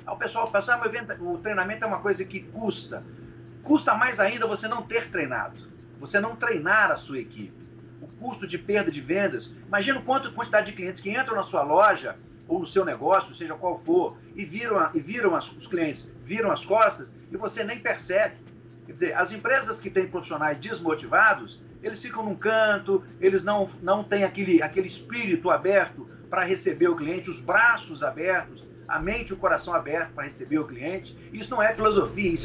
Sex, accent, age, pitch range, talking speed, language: male, Brazilian, 50-69, 190-250 Hz, 190 wpm, Portuguese